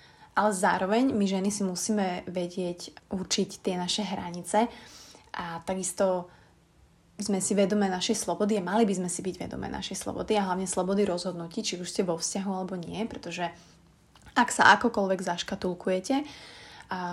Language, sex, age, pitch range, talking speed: Slovak, female, 20-39, 180-210 Hz, 155 wpm